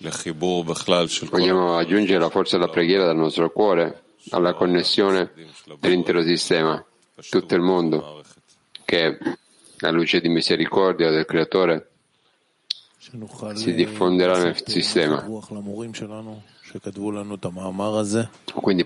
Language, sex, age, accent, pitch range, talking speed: Italian, male, 50-69, native, 85-95 Hz, 90 wpm